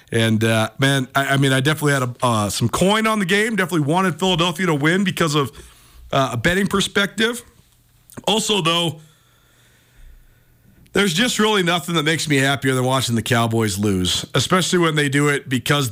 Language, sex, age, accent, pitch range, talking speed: English, male, 40-59, American, 130-175 Hz, 180 wpm